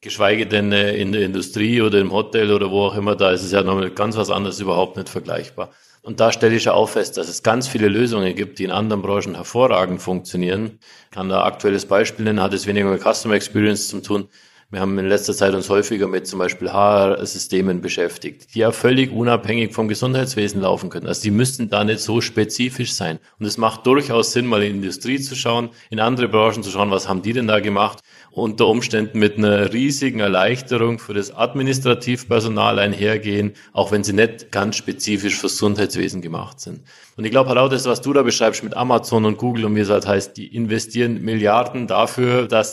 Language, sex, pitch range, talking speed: German, male, 100-120 Hz, 210 wpm